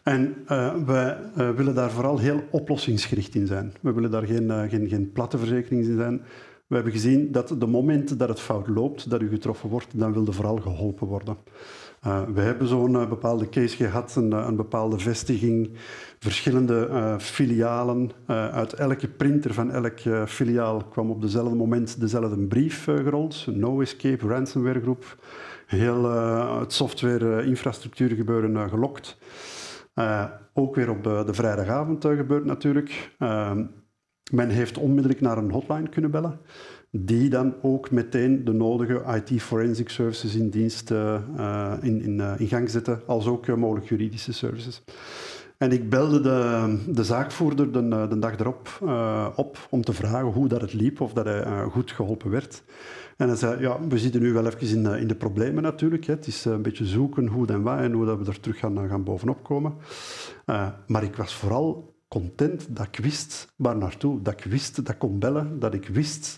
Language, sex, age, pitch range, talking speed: Dutch, male, 50-69, 110-135 Hz, 185 wpm